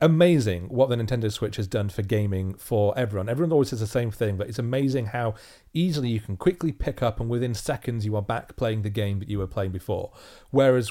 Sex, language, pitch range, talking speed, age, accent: male, English, 105-145 Hz, 230 wpm, 30-49, British